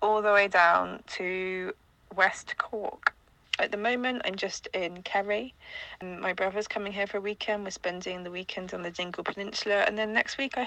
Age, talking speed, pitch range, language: 20-39, 195 wpm, 180-215 Hz, English